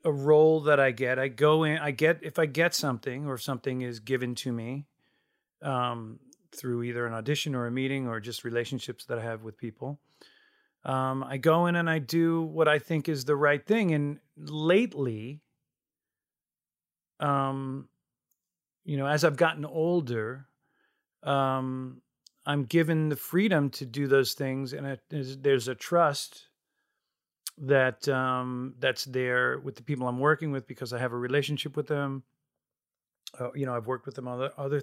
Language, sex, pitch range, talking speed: English, male, 130-165 Hz, 170 wpm